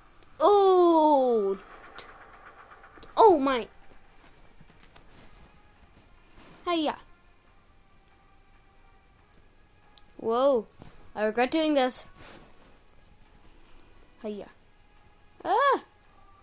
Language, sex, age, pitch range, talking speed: English, female, 10-29, 185-290 Hz, 40 wpm